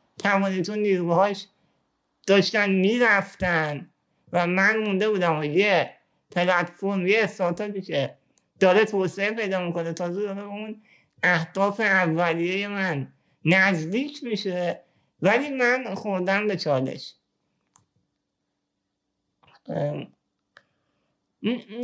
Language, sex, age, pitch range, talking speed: Persian, male, 50-69, 175-215 Hz, 90 wpm